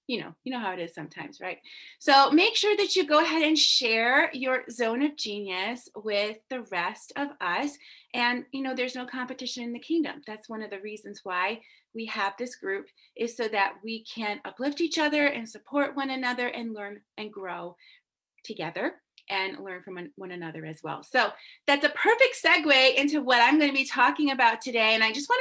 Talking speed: 210 wpm